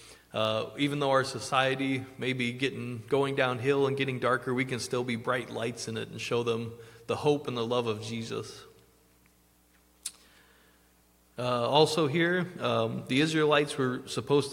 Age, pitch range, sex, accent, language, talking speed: 20-39, 115-140 Hz, male, American, English, 155 wpm